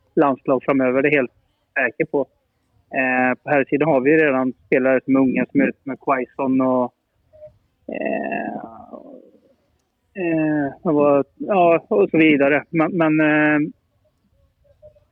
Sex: male